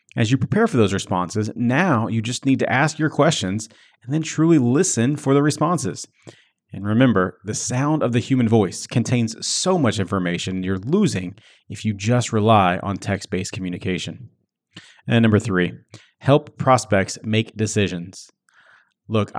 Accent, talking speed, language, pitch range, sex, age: American, 155 wpm, English, 100-135 Hz, male, 30-49